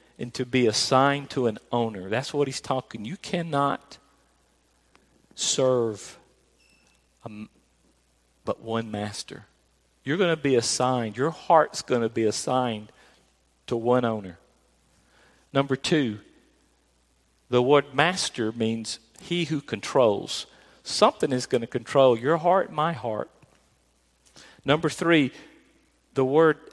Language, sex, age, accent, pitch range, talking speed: English, male, 50-69, American, 110-145 Hz, 120 wpm